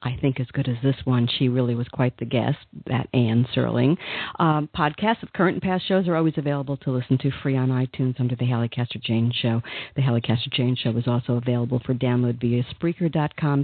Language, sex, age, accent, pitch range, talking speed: English, female, 50-69, American, 125-140 Hz, 220 wpm